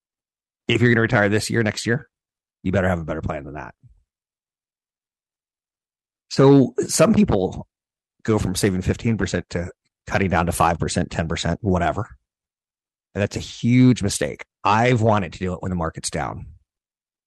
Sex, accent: male, American